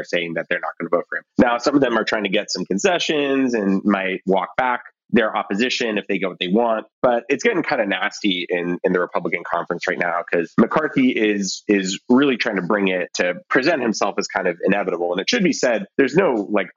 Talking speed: 245 wpm